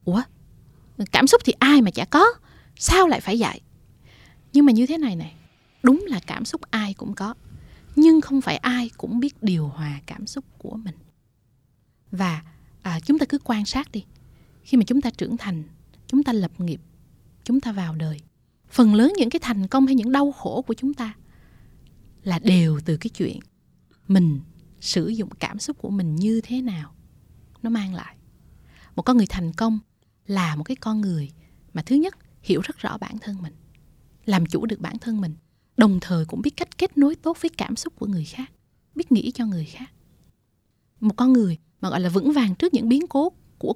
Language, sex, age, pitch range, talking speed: Vietnamese, female, 20-39, 170-255 Hz, 200 wpm